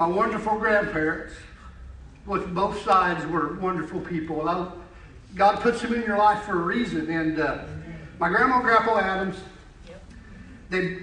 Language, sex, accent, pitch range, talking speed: English, male, American, 180-225 Hz, 140 wpm